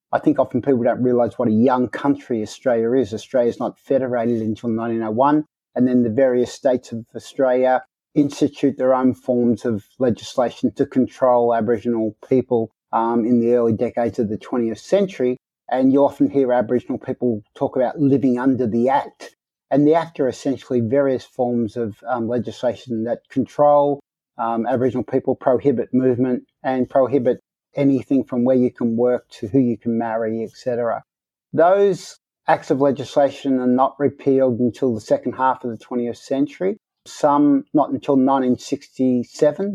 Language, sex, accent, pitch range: English, male, Australian, 120-135 Hz